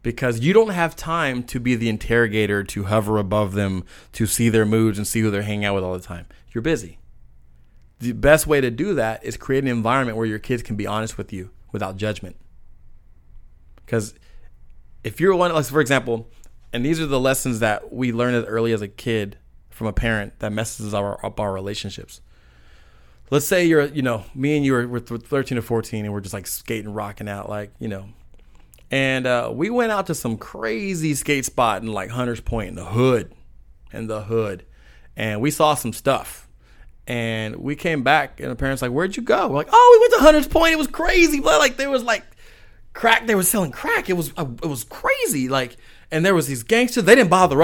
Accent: American